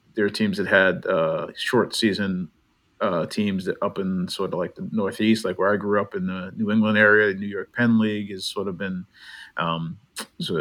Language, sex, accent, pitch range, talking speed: English, male, American, 95-115 Hz, 220 wpm